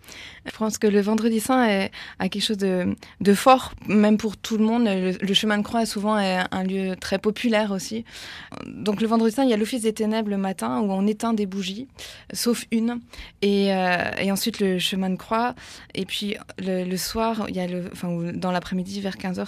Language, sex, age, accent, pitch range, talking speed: French, female, 20-39, French, 195-230 Hz, 220 wpm